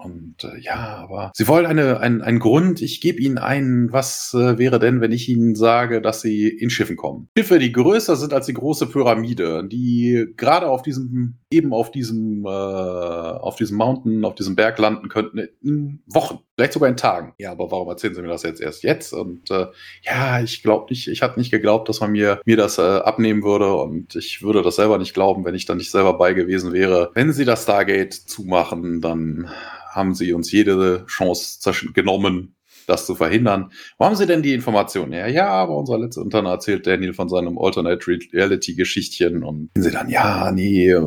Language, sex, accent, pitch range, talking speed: German, male, German, 95-120 Hz, 205 wpm